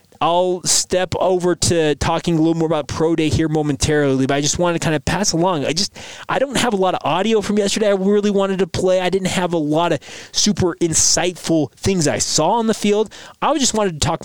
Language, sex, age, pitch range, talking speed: English, male, 20-39, 135-170 Hz, 240 wpm